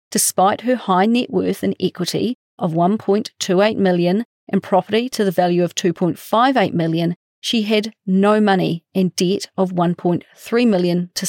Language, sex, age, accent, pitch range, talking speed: English, female, 40-59, Australian, 175-210 Hz, 190 wpm